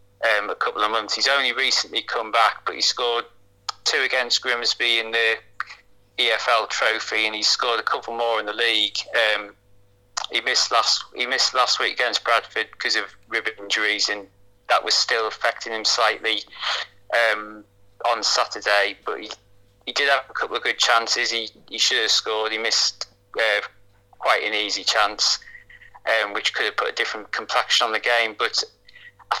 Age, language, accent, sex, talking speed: 30-49, English, British, male, 180 wpm